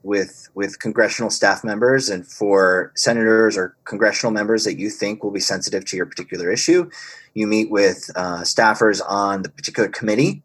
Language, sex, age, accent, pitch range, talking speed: English, male, 30-49, American, 95-125 Hz, 170 wpm